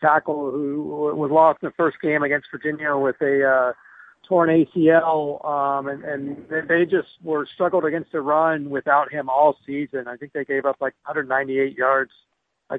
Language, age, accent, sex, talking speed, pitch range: English, 50-69, American, male, 180 wpm, 140-165 Hz